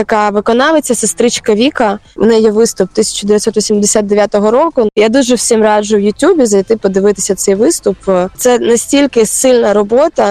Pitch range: 200-235 Hz